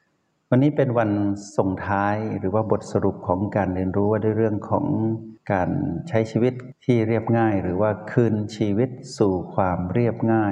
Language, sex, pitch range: Thai, male, 95-115 Hz